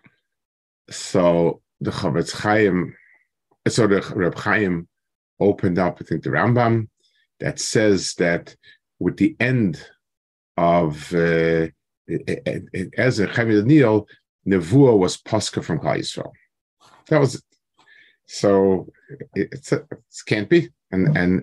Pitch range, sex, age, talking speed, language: 90-120 Hz, male, 50-69, 125 wpm, English